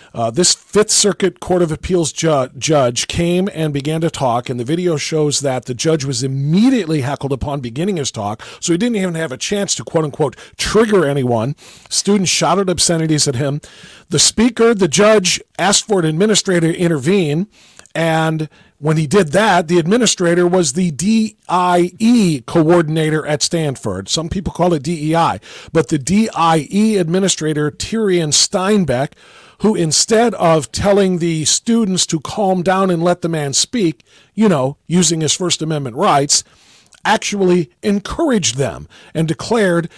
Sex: male